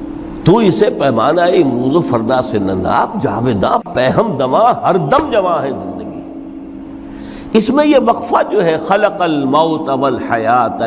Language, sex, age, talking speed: Urdu, male, 60-79, 145 wpm